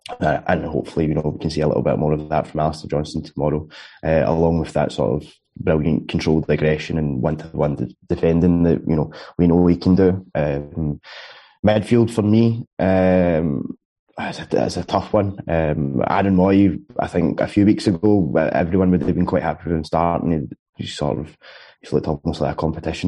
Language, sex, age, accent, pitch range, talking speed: English, male, 20-39, British, 80-95 Hz, 200 wpm